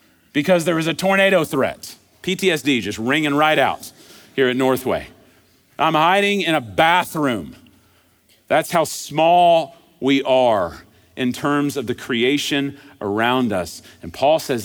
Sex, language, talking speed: male, English, 140 wpm